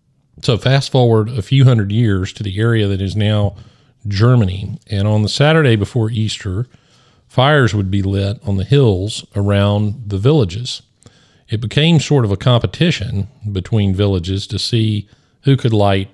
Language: English